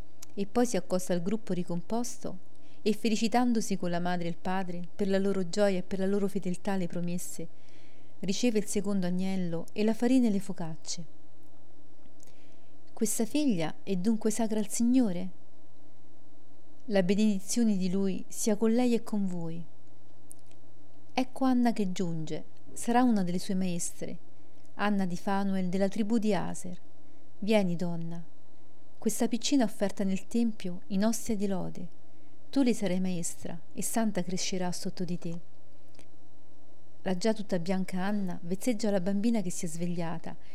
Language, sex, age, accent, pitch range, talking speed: Italian, female, 40-59, native, 180-215 Hz, 150 wpm